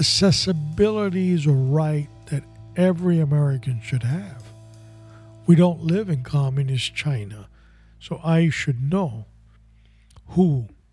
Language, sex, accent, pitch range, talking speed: English, male, American, 125-175 Hz, 110 wpm